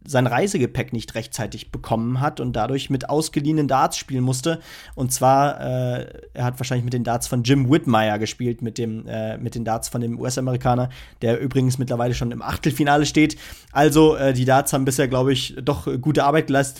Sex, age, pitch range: male, 30-49, 120-140 Hz